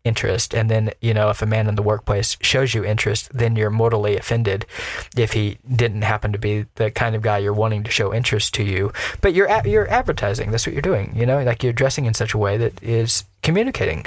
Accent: American